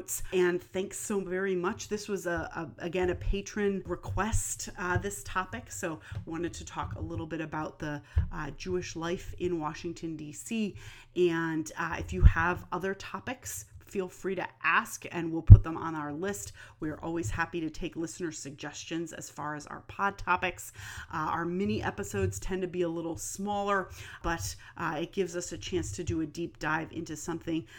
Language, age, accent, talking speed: English, 30-49, American, 185 wpm